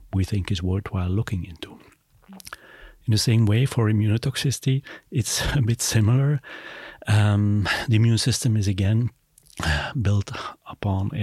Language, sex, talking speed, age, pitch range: English, male, 130 wpm, 40-59, 95-115 Hz